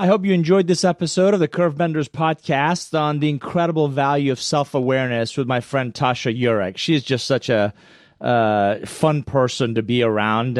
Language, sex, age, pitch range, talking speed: English, male, 30-49, 120-155 Hz, 180 wpm